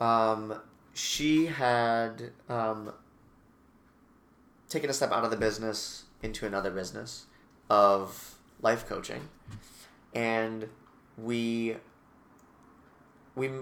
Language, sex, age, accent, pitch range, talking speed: English, male, 30-49, American, 95-115 Hz, 90 wpm